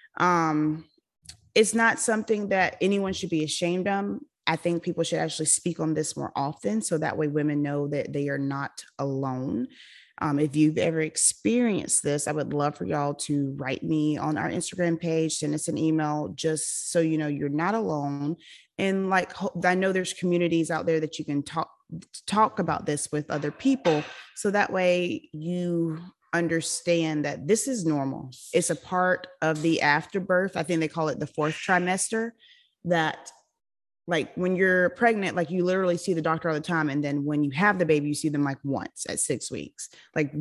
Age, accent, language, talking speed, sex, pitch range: 20-39, American, English, 195 wpm, female, 150-185 Hz